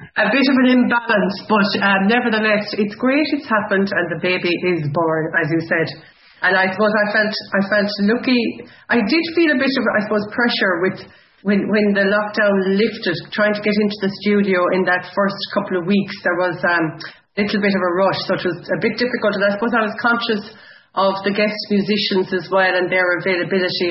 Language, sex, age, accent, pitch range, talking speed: English, female, 30-49, Irish, 180-215 Hz, 215 wpm